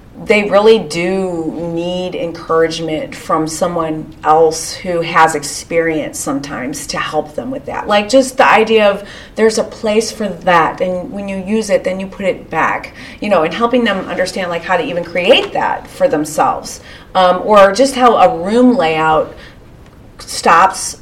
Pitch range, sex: 170-245 Hz, female